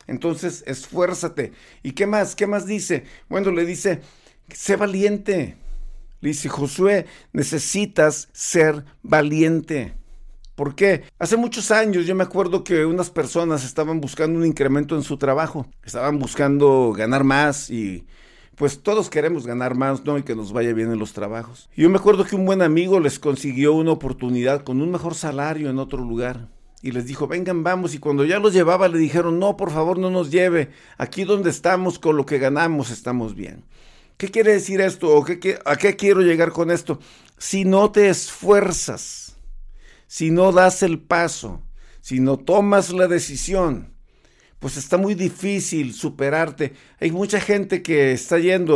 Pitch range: 135-185 Hz